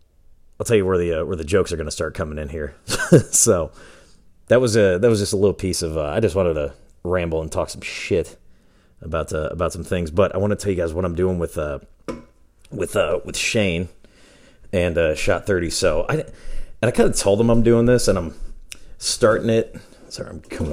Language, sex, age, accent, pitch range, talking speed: English, male, 30-49, American, 85-115 Hz, 230 wpm